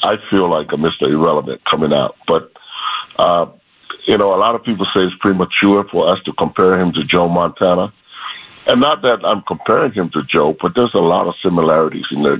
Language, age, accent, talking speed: English, 50-69, American, 210 wpm